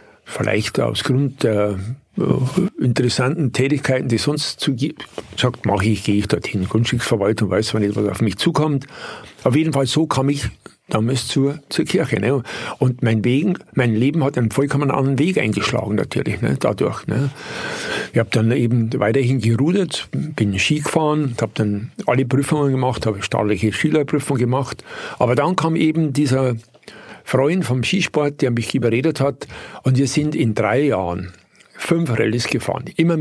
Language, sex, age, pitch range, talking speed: German, male, 60-79, 115-145 Hz, 165 wpm